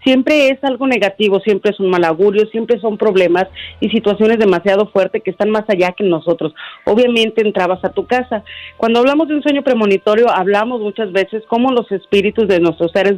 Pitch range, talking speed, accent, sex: 180-215 Hz, 190 wpm, Mexican, female